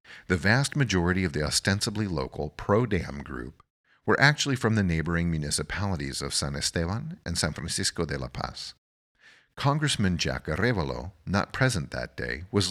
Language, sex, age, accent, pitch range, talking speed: English, male, 50-69, American, 75-100 Hz, 150 wpm